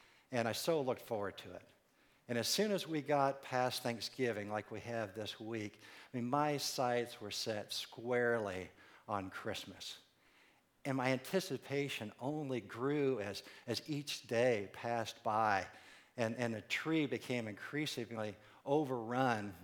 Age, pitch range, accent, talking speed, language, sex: 50-69, 110-135 Hz, American, 145 wpm, English, male